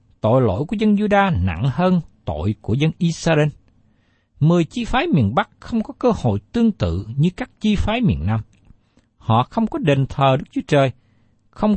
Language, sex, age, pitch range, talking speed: Vietnamese, male, 60-79, 110-180 Hz, 190 wpm